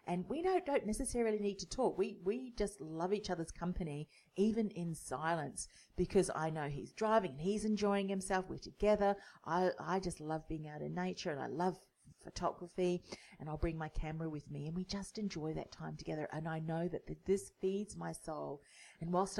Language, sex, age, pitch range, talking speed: English, female, 40-59, 160-195 Hz, 205 wpm